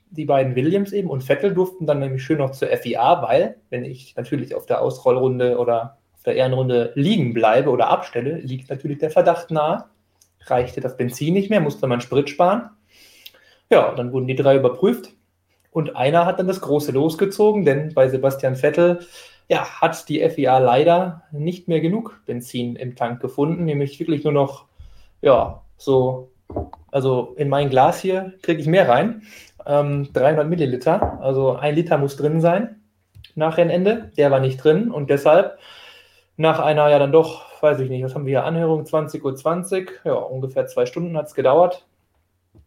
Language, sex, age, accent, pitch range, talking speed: German, male, 20-39, German, 130-165 Hz, 175 wpm